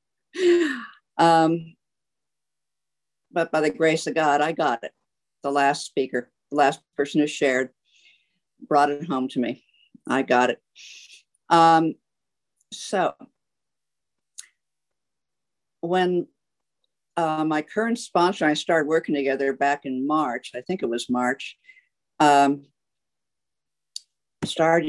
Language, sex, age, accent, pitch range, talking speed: English, female, 50-69, American, 140-170 Hz, 115 wpm